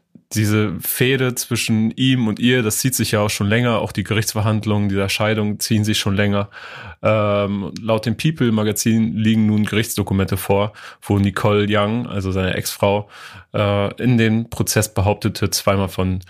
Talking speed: 160 wpm